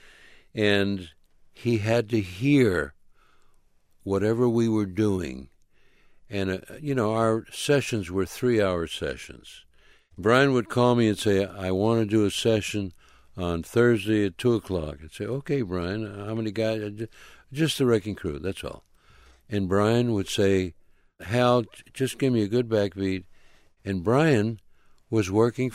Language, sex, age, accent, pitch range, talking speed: English, male, 60-79, American, 90-120 Hz, 145 wpm